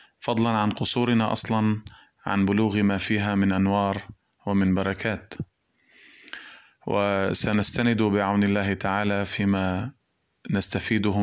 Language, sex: Arabic, male